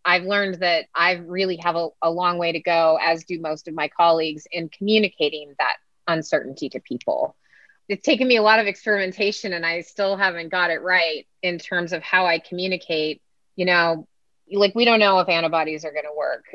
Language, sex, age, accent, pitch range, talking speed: English, female, 30-49, American, 160-190 Hz, 205 wpm